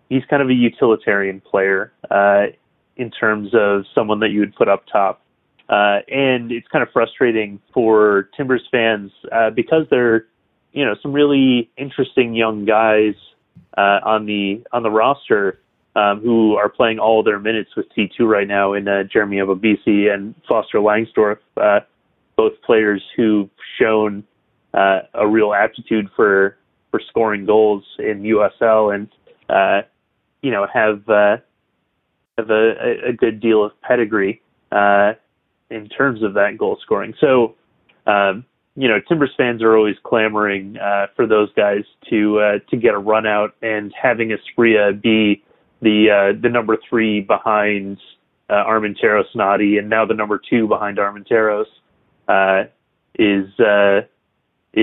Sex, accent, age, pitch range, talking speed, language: male, American, 30-49, 100-110 Hz, 150 wpm, English